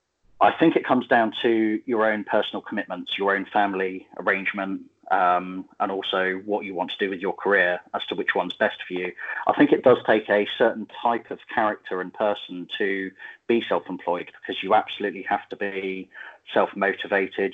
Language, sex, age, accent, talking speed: English, male, 30-49, British, 185 wpm